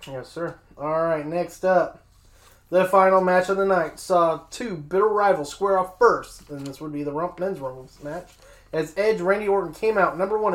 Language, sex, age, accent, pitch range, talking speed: English, male, 20-39, American, 155-190 Hz, 205 wpm